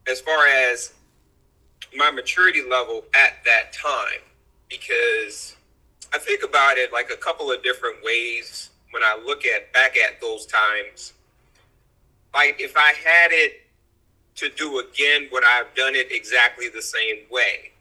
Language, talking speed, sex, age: English, 150 wpm, male, 30-49